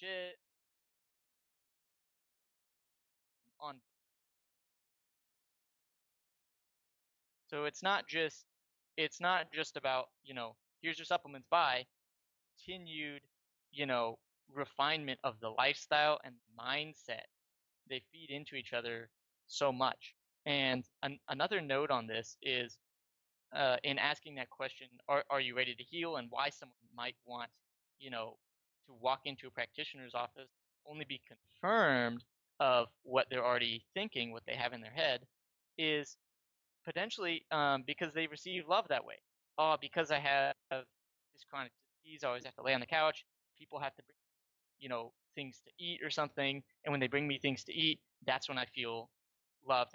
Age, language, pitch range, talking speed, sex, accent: 20-39, English, 120-150 Hz, 150 wpm, male, American